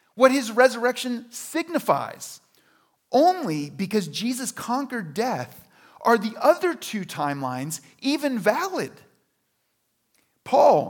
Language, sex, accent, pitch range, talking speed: English, male, American, 210-275 Hz, 95 wpm